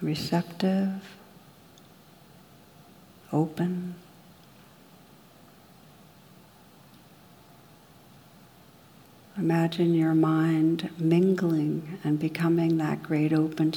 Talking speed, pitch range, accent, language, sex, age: 50 wpm, 155-175 Hz, American, English, female, 60-79